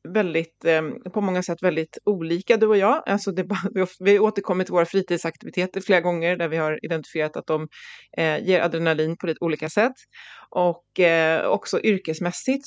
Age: 30-49